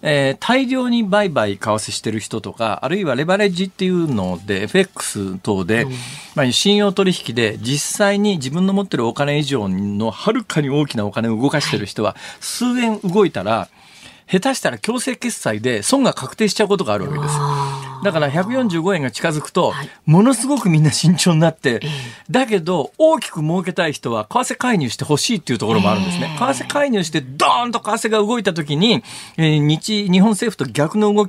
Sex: male